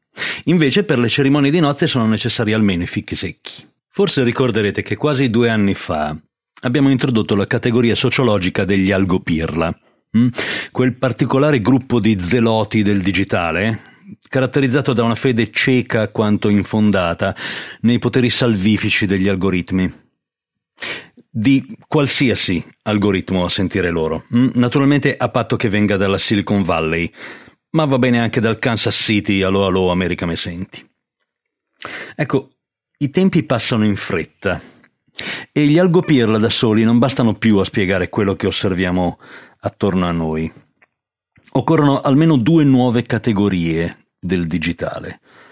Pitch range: 95-130 Hz